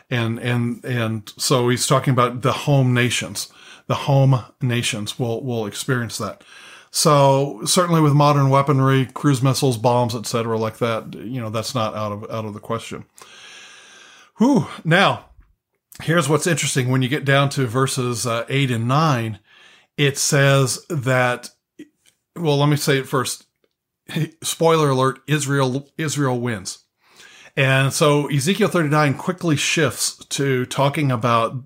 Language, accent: English, American